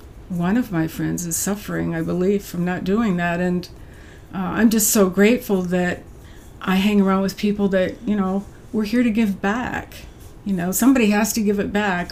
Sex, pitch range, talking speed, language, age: female, 175-205 Hz, 200 wpm, English, 50-69